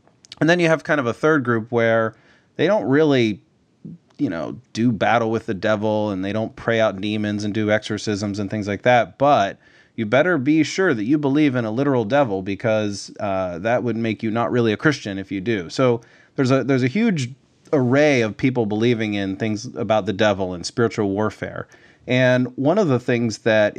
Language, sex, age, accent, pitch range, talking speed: English, male, 30-49, American, 105-130 Hz, 205 wpm